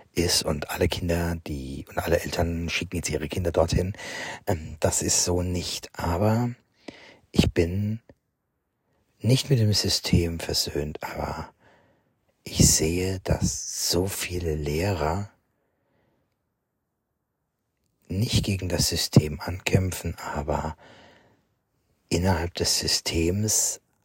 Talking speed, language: 100 wpm, German